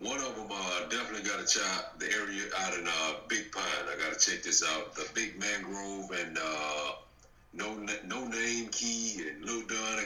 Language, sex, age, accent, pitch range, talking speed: English, male, 50-69, American, 75-110 Hz, 195 wpm